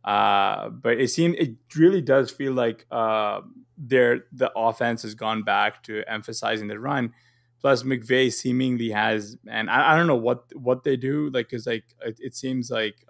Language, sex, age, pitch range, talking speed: English, male, 20-39, 110-125 Hz, 185 wpm